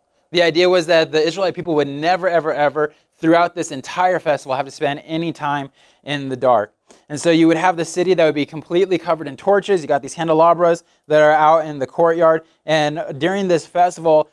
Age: 20-39